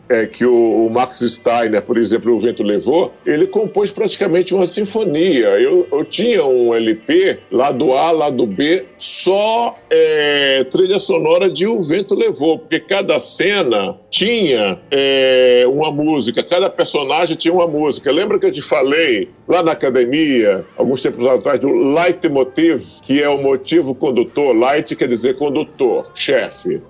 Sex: male